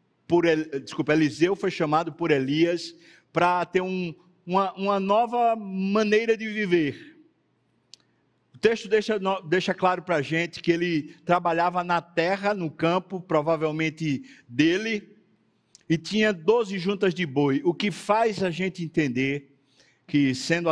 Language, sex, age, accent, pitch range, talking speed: Portuguese, male, 60-79, Brazilian, 165-200 Hz, 130 wpm